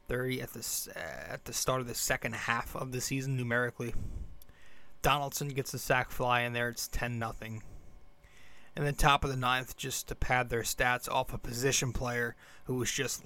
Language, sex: English, male